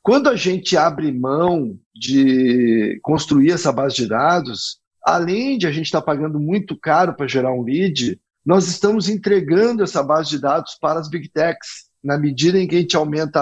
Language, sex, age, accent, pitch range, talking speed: Portuguese, male, 50-69, Brazilian, 140-180 Hz, 185 wpm